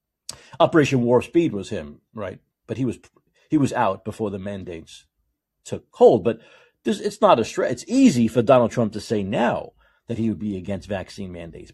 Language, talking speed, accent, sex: English, 190 wpm, American, male